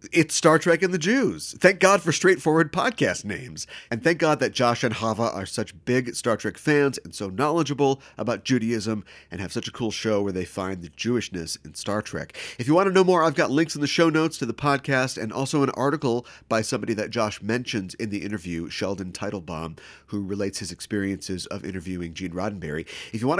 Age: 30-49